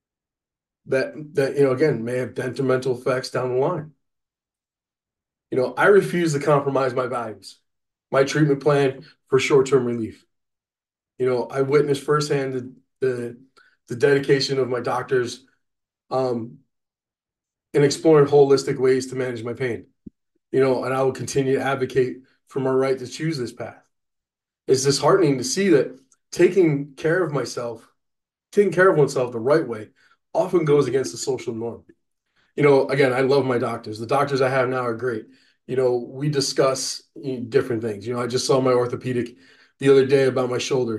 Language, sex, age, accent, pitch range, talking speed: English, male, 20-39, American, 125-140 Hz, 170 wpm